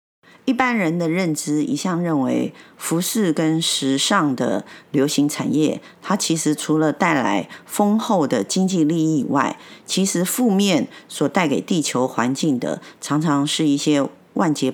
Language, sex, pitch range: Chinese, female, 150-200 Hz